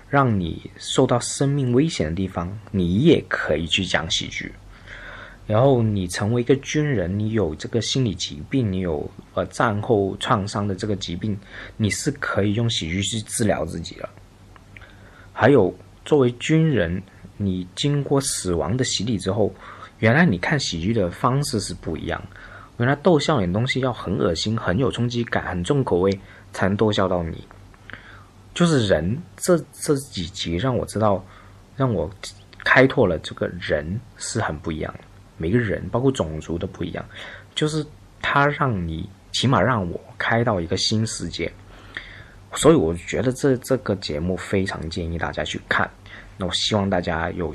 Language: Chinese